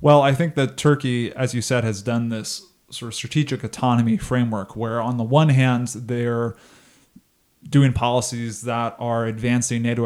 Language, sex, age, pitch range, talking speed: English, male, 20-39, 115-130 Hz, 165 wpm